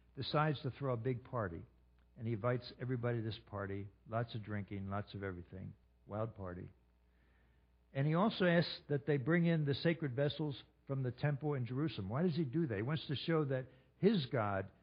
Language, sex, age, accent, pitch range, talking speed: English, male, 60-79, American, 100-140 Hz, 200 wpm